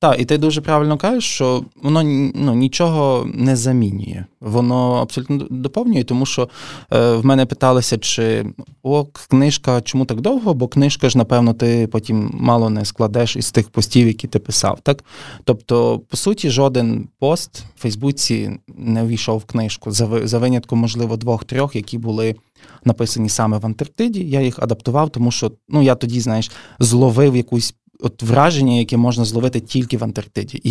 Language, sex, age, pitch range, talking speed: Ukrainian, male, 20-39, 115-135 Hz, 165 wpm